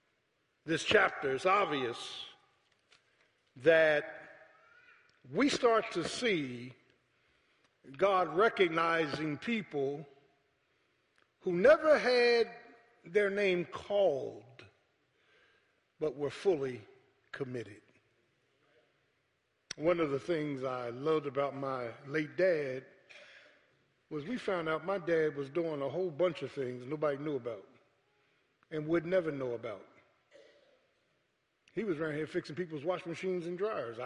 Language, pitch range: English, 140-205 Hz